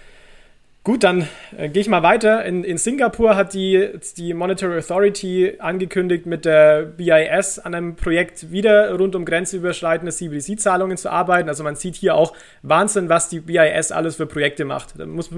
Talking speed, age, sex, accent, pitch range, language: 175 wpm, 30-49, male, German, 155-185 Hz, German